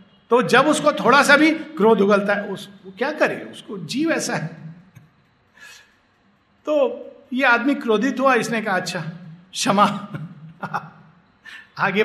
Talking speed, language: 135 wpm, Hindi